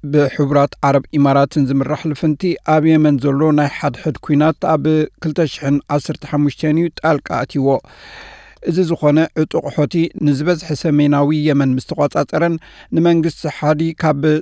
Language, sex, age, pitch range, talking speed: Amharic, male, 60-79, 145-160 Hz, 120 wpm